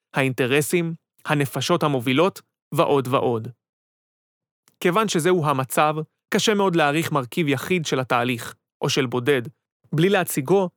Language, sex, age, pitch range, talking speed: Hebrew, male, 30-49, 135-170 Hz, 110 wpm